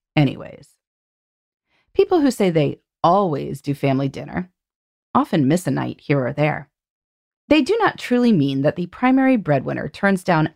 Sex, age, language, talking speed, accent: female, 30-49, English, 155 wpm, American